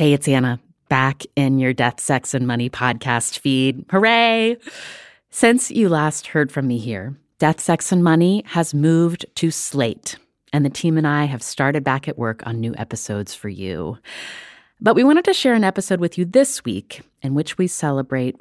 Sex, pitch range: female, 125-170 Hz